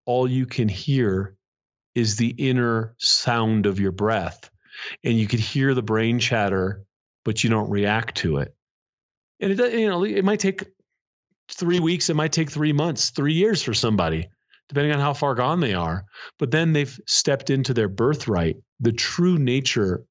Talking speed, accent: 170 wpm, American